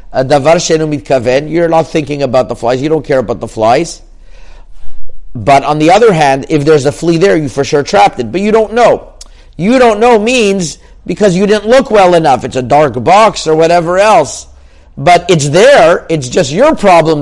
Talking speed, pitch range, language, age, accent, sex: 200 wpm, 135-175 Hz, English, 50-69, American, male